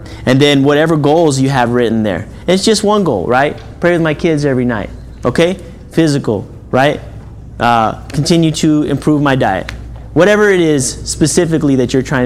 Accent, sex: American, male